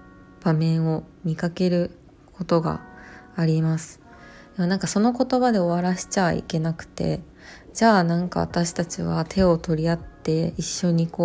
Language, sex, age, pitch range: Japanese, female, 20-39, 155-180 Hz